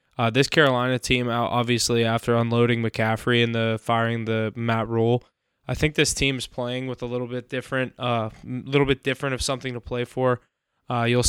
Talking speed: 205 wpm